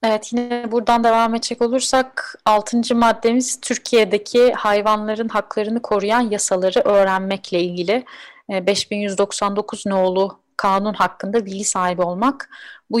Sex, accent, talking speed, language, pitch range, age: female, native, 105 wpm, Turkish, 195-230 Hz, 30-49